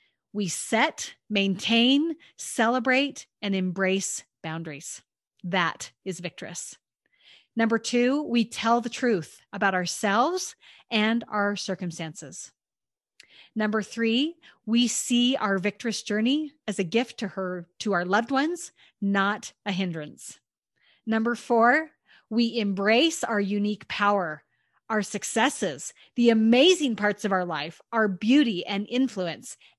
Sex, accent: female, American